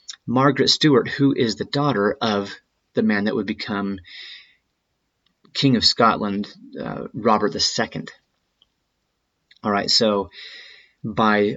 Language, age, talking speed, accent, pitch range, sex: English, 30-49, 115 wpm, American, 100-120 Hz, male